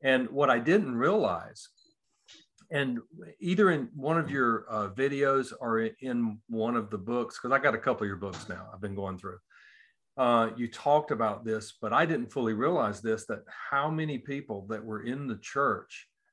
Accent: American